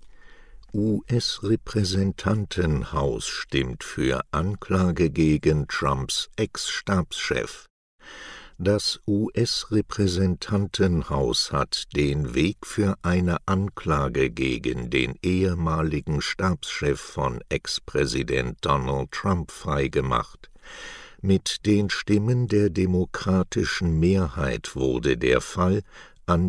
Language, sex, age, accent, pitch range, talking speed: German, male, 60-79, German, 75-95 Hz, 75 wpm